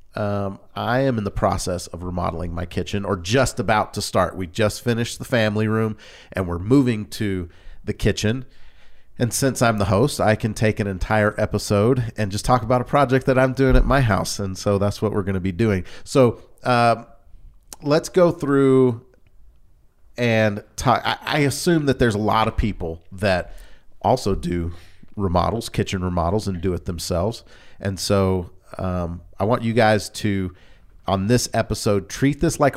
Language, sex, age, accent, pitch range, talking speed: English, male, 40-59, American, 95-125 Hz, 180 wpm